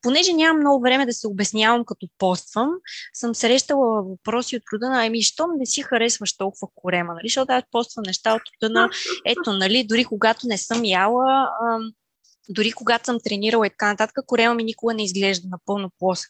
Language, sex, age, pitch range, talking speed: Bulgarian, female, 20-39, 205-250 Hz, 185 wpm